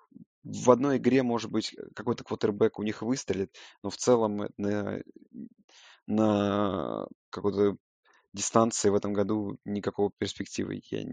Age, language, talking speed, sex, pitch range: 20-39, Russian, 125 wpm, male, 105-120 Hz